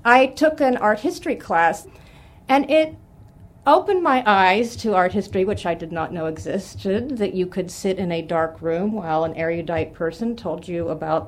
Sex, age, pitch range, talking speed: female, 40-59, 160-210 Hz, 185 wpm